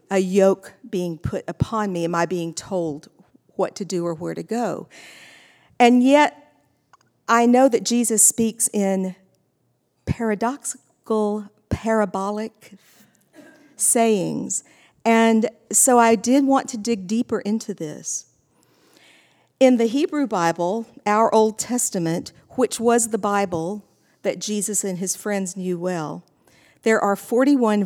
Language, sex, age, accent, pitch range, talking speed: English, female, 50-69, American, 180-230 Hz, 125 wpm